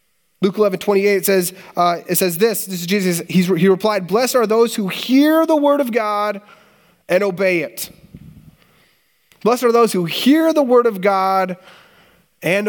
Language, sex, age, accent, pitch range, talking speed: English, male, 30-49, American, 180-215 Hz, 175 wpm